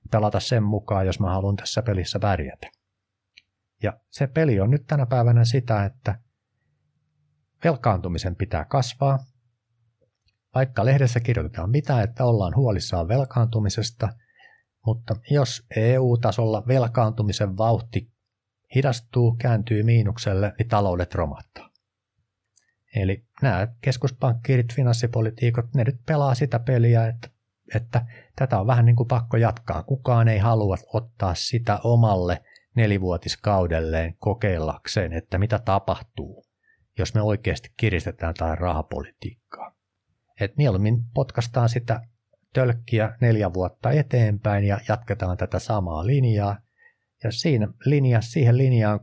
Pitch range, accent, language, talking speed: 100-125 Hz, native, Finnish, 110 wpm